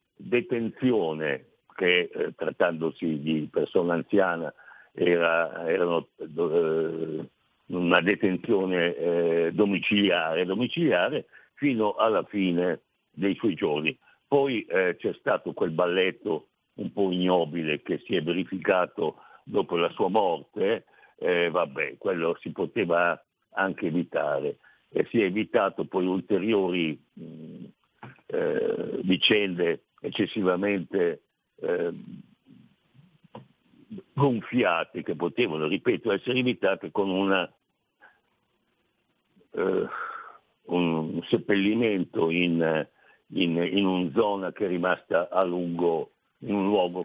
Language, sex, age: Italian, male, 60-79